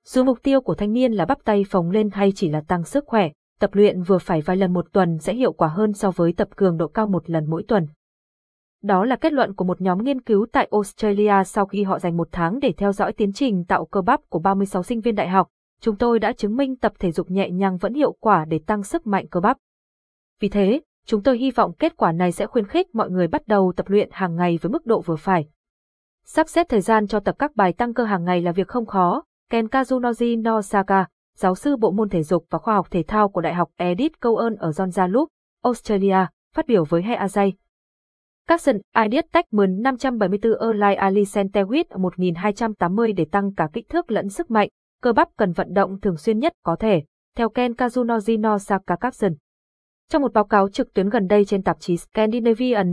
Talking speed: 225 wpm